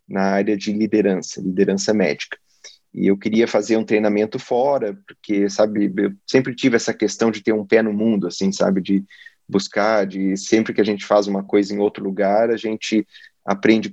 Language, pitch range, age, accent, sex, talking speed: Portuguese, 100-110 Hz, 30-49, Brazilian, male, 190 wpm